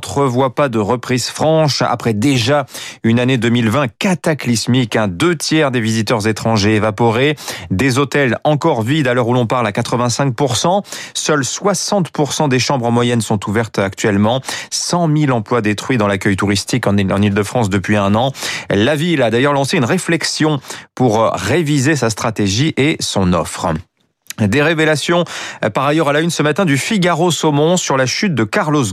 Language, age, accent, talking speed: French, 30-49, French, 170 wpm